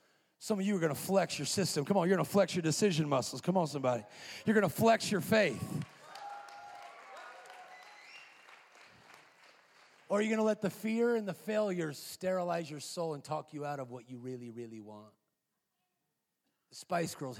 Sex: male